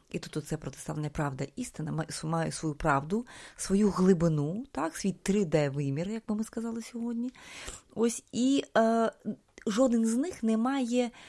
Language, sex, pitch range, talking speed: Ukrainian, female, 155-220 Hz, 140 wpm